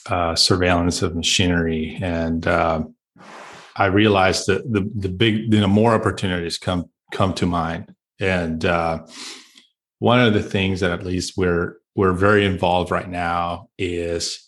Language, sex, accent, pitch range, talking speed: English, male, American, 85-105 Hz, 150 wpm